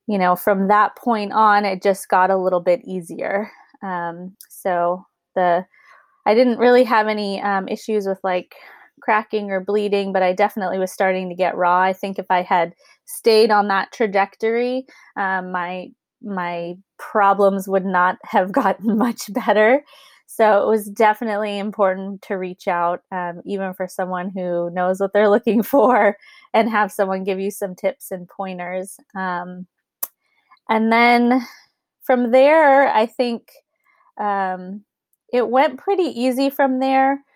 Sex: female